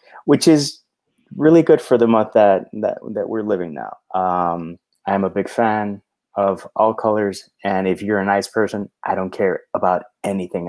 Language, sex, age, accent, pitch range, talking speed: English, male, 30-49, American, 95-120 Hz, 175 wpm